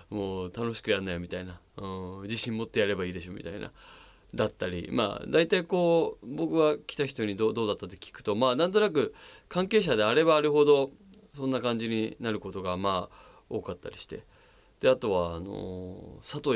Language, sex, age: Japanese, male, 20-39